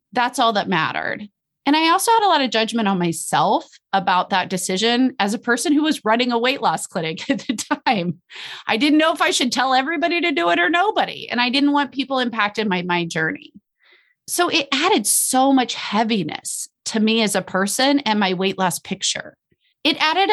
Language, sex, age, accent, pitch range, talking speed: English, female, 30-49, American, 185-280 Hz, 205 wpm